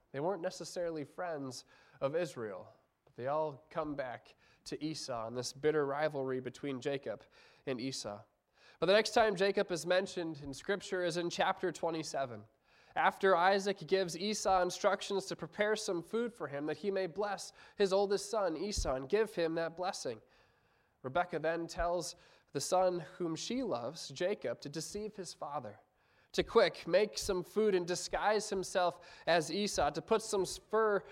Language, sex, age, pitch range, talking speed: English, male, 20-39, 150-195 Hz, 165 wpm